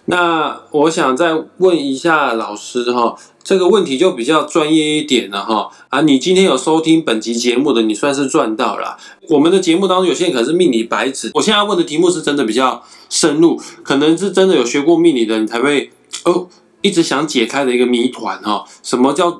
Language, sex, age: Chinese, male, 20-39